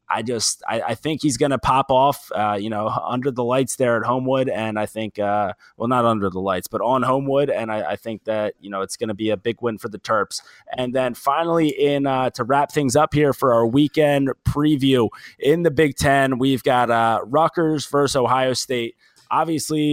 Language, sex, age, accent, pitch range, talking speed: English, male, 20-39, American, 120-150 Hz, 215 wpm